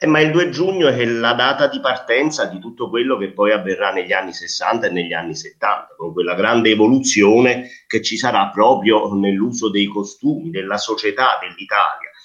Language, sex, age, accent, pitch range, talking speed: Italian, male, 30-49, native, 105-135 Hz, 180 wpm